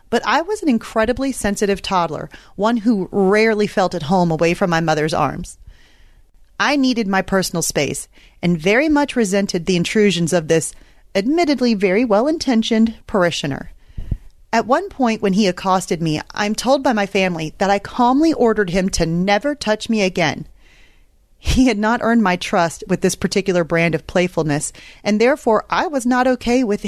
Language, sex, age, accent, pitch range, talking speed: English, female, 30-49, American, 175-235 Hz, 170 wpm